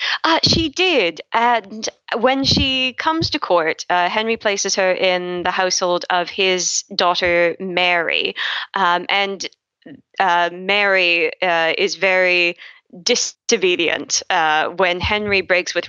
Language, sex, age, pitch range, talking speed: English, female, 20-39, 165-195 Hz, 125 wpm